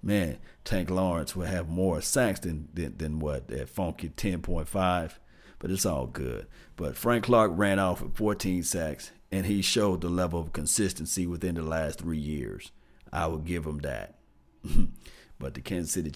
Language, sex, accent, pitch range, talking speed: English, male, American, 85-120 Hz, 175 wpm